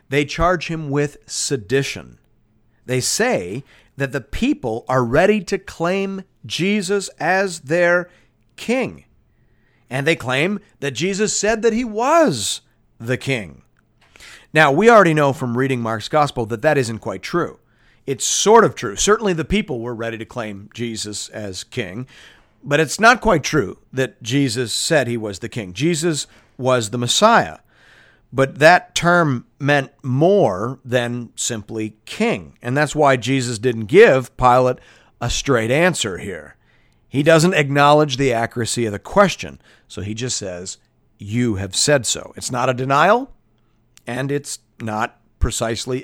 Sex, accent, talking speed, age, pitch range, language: male, American, 150 wpm, 50-69, 115-155 Hz, English